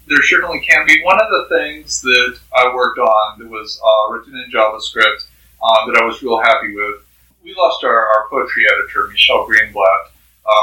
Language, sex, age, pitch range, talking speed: English, male, 40-59, 105-120 Hz, 185 wpm